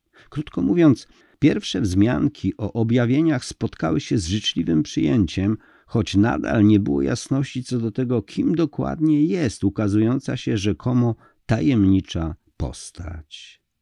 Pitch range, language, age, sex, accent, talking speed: 90-125 Hz, Polish, 50-69, male, native, 115 wpm